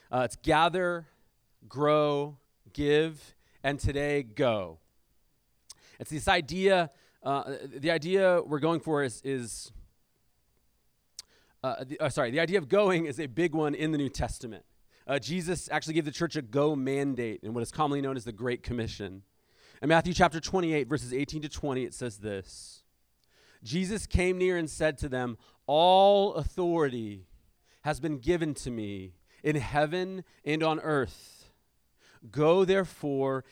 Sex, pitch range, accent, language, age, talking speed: male, 125-165 Hz, American, English, 30-49, 150 wpm